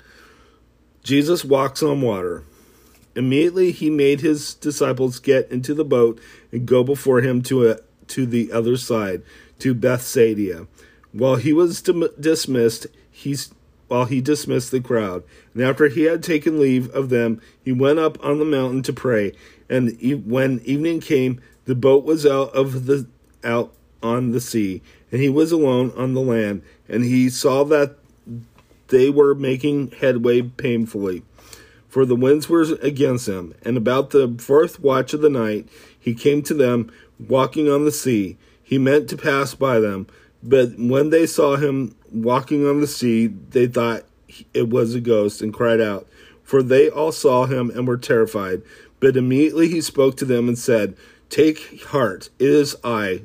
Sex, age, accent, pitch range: male, 50-69, American, 115-145 Hz